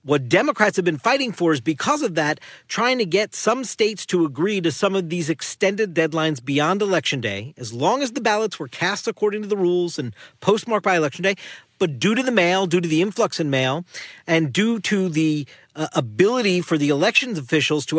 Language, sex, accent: English, male, American